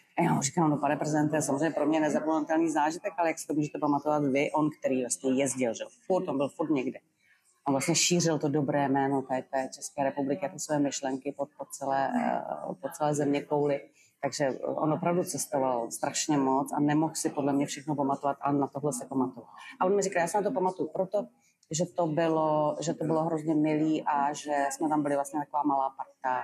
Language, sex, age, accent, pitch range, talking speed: Czech, female, 30-49, native, 140-160 Hz, 210 wpm